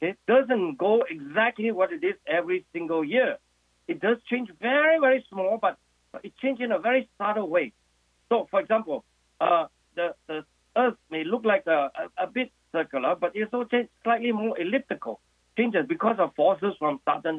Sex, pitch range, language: male, 160-240 Hz, English